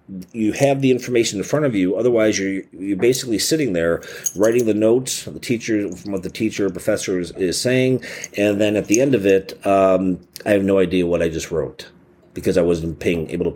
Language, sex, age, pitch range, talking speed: English, male, 30-49, 95-120 Hz, 225 wpm